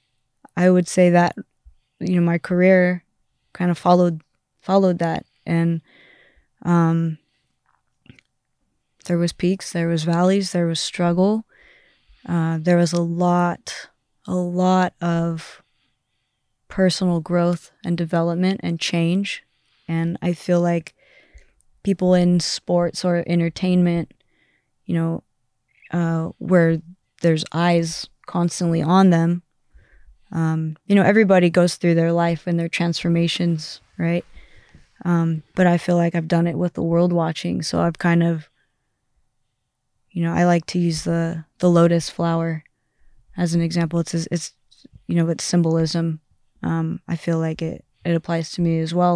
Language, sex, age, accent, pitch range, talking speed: Dutch, female, 20-39, American, 165-175 Hz, 140 wpm